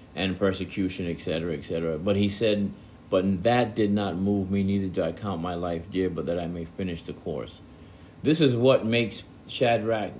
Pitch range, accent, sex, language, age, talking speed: 85-110 Hz, American, male, English, 60-79, 190 wpm